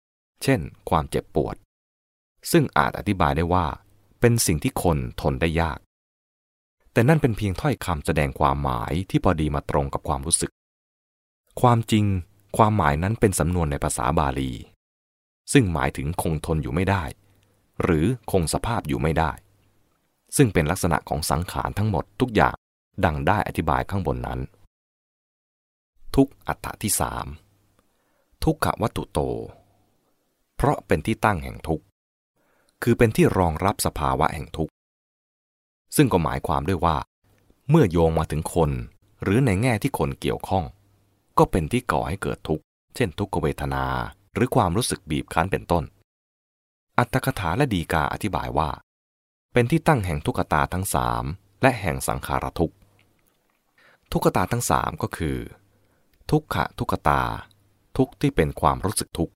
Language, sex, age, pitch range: English, male, 20-39, 70-105 Hz